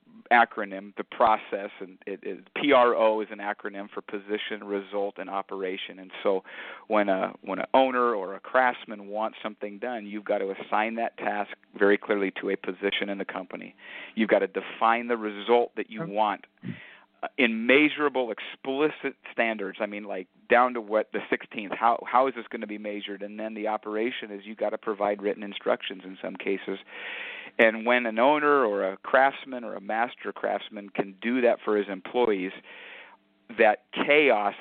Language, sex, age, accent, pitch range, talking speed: English, male, 40-59, American, 100-125 Hz, 180 wpm